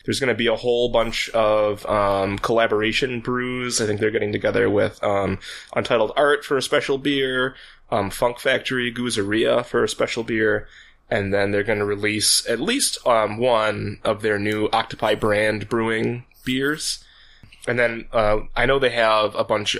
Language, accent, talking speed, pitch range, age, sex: English, American, 175 wpm, 105-120 Hz, 20-39, male